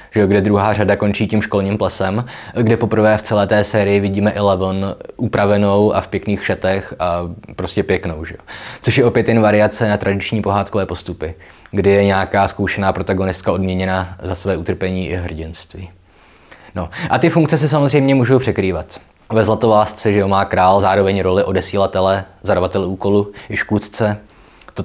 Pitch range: 95-110 Hz